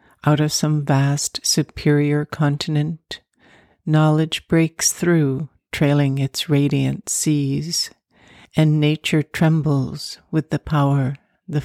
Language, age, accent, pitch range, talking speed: English, 60-79, American, 145-160 Hz, 105 wpm